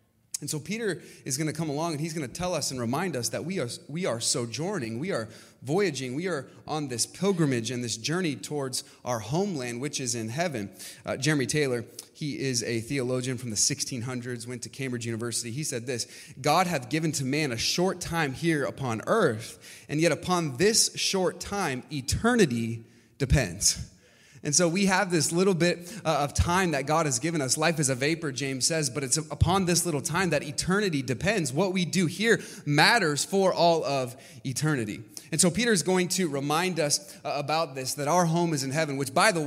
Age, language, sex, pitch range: 30-49, English, male, 140-180 Hz